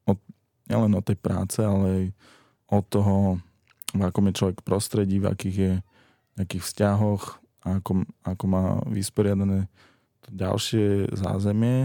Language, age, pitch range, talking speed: Slovak, 20-39, 100-110 Hz, 125 wpm